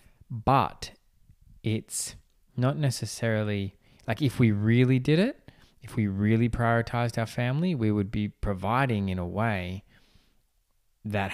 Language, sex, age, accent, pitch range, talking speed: English, male, 20-39, Australian, 95-110 Hz, 125 wpm